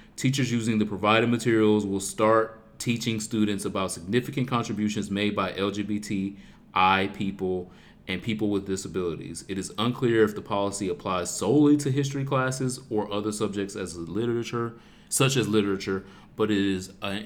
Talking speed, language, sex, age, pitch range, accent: 150 wpm, English, male, 30-49, 95-115 Hz, American